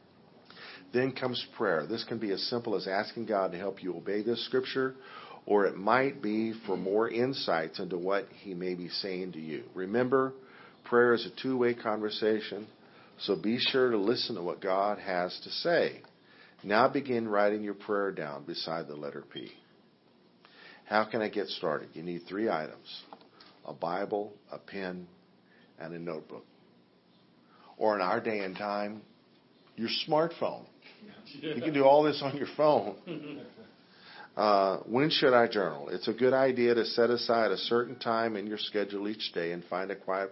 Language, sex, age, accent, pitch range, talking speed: English, male, 50-69, American, 95-120 Hz, 170 wpm